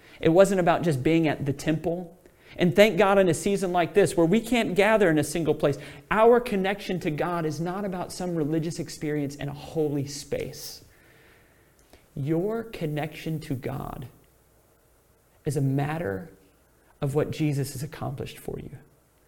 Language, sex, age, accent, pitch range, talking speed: English, male, 40-59, American, 145-185 Hz, 160 wpm